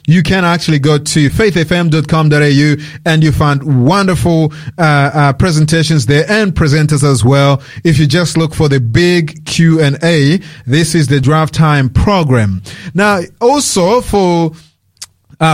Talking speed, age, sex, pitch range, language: 145 wpm, 30-49, male, 145-180 Hz, English